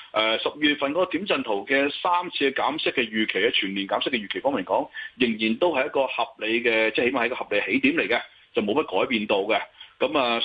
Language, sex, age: Chinese, male, 30-49